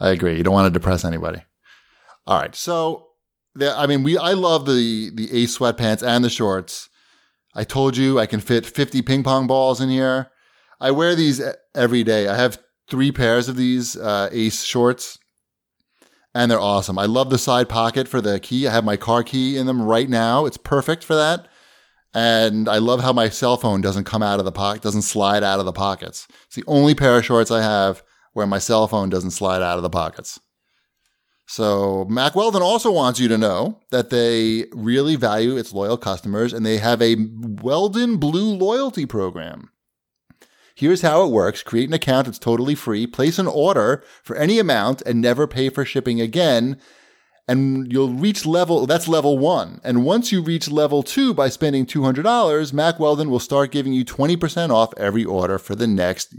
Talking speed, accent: 195 wpm, American